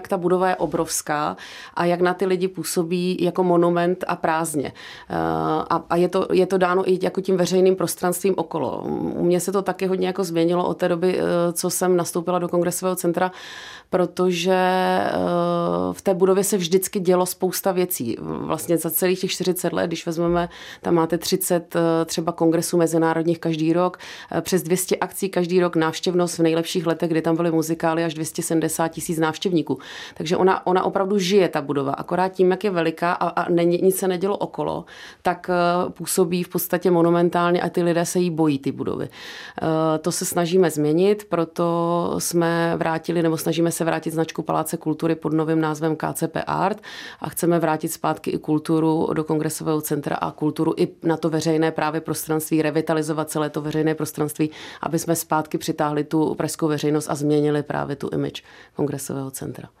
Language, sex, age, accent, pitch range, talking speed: Czech, female, 30-49, native, 160-180 Hz, 175 wpm